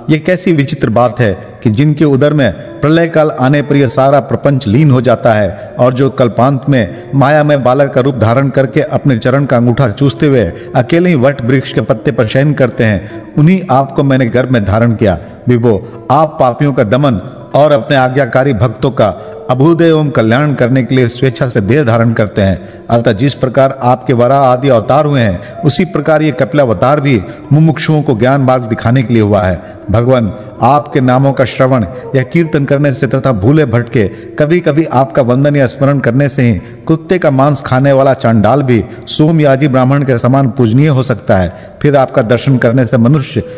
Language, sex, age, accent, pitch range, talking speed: Hindi, male, 50-69, native, 120-145 Hz, 145 wpm